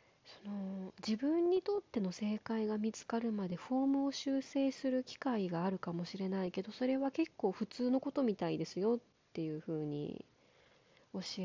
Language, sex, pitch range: Japanese, female, 180-250 Hz